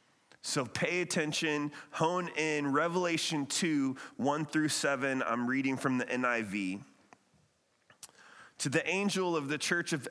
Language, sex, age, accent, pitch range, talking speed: English, male, 30-49, American, 130-170 Hz, 130 wpm